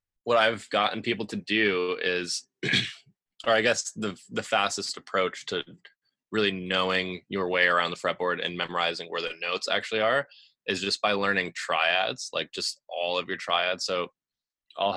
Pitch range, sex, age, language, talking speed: 85-100 Hz, male, 20-39, English, 170 wpm